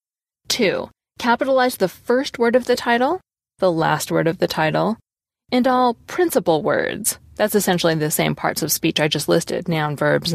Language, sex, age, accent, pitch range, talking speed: English, female, 20-39, American, 170-230 Hz, 175 wpm